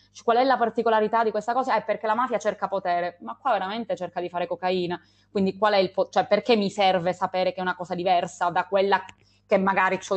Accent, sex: native, female